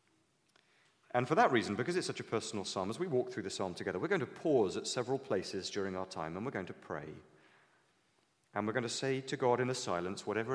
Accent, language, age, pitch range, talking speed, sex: British, English, 30-49, 80-120 Hz, 245 wpm, male